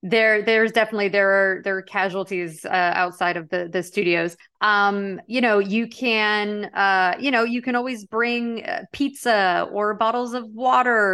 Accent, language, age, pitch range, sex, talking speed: American, English, 30-49, 180-225 Hz, female, 165 wpm